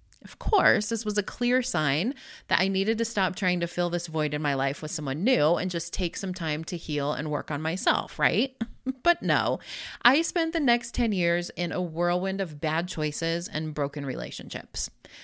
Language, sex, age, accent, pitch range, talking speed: English, female, 30-49, American, 165-230 Hz, 205 wpm